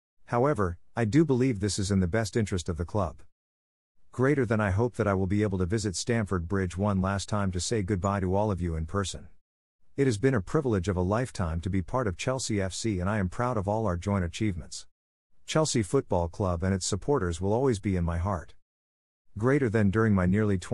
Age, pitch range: 50-69, 90-115 Hz